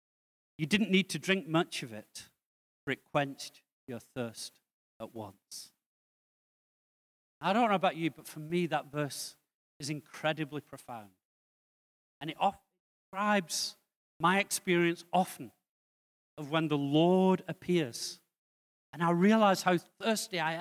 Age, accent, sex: 40-59, British, male